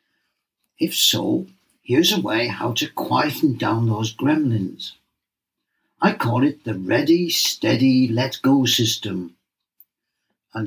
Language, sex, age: English, male, 60-79